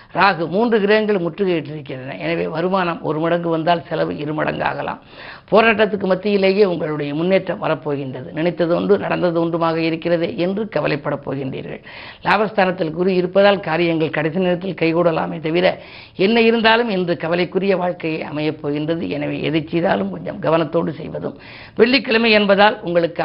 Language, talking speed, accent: Tamil, 125 wpm, native